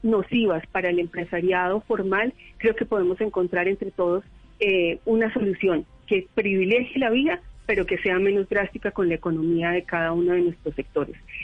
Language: Spanish